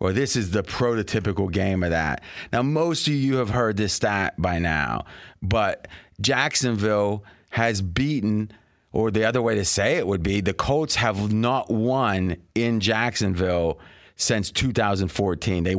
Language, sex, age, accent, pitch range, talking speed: English, male, 30-49, American, 100-150 Hz, 155 wpm